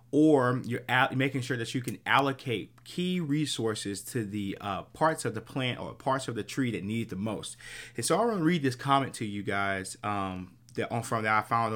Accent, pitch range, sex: American, 105-135 Hz, male